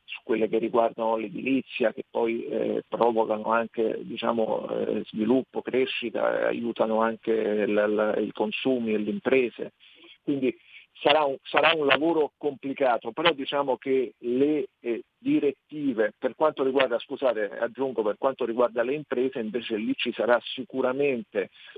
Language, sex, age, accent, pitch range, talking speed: Italian, male, 50-69, native, 115-135 Hz, 135 wpm